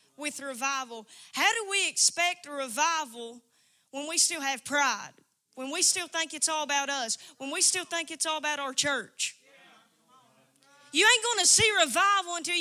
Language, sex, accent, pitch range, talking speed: English, female, American, 280-370 Hz, 175 wpm